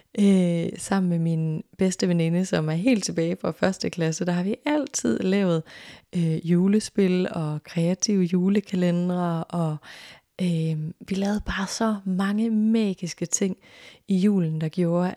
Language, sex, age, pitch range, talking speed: Danish, female, 30-49, 170-200 Hz, 140 wpm